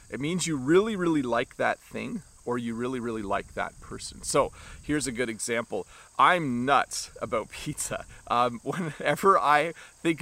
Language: English